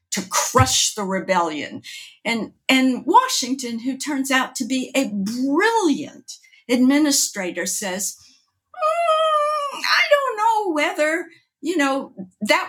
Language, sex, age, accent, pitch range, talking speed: English, female, 60-79, American, 205-295 Hz, 115 wpm